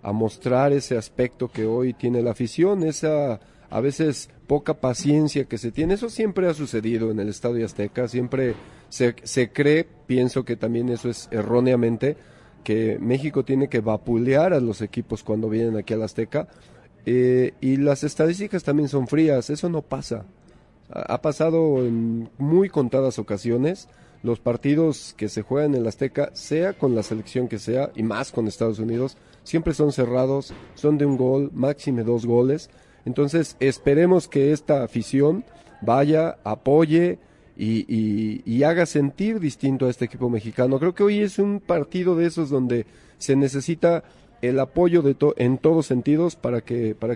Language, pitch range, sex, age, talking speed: Spanish, 115-150 Hz, male, 40-59, 170 wpm